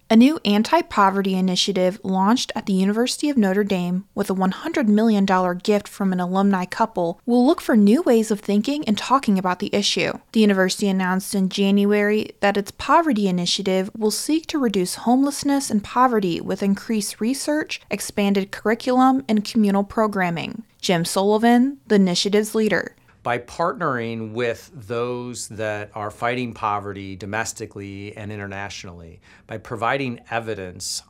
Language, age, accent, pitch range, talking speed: English, 30-49, American, 155-220 Hz, 145 wpm